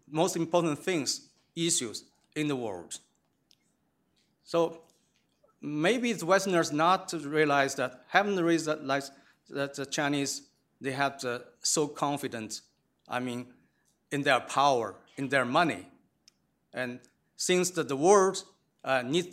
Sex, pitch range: male, 135-170 Hz